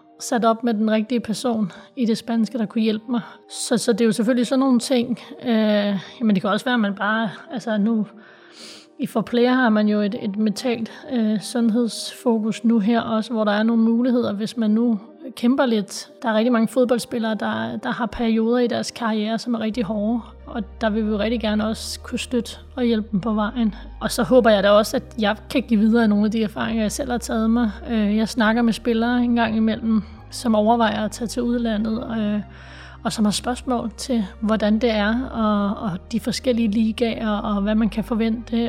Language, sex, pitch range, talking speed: Danish, female, 215-235 Hz, 210 wpm